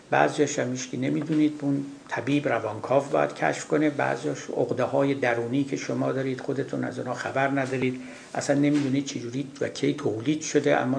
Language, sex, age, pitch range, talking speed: Persian, male, 60-79, 130-165 Hz, 165 wpm